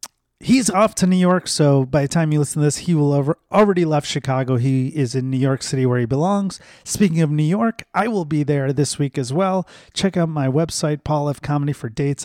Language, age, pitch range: English, 30-49, 130-160 Hz